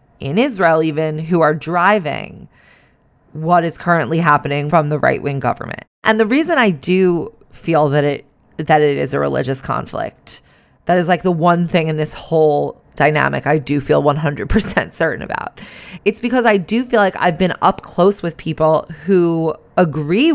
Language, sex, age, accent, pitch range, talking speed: English, female, 20-39, American, 150-180 Hz, 170 wpm